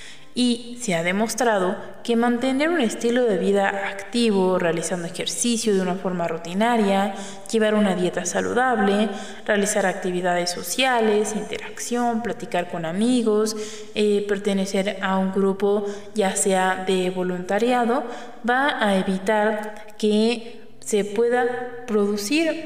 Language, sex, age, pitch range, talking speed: Spanish, female, 20-39, 190-230 Hz, 115 wpm